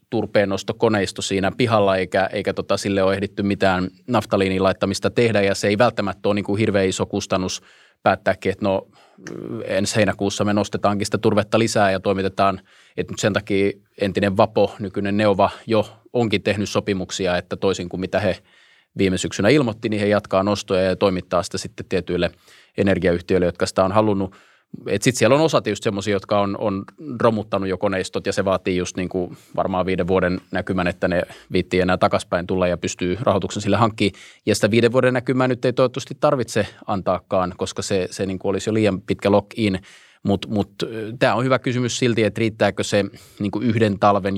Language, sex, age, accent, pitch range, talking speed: Finnish, male, 30-49, native, 95-105 Hz, 180 wpm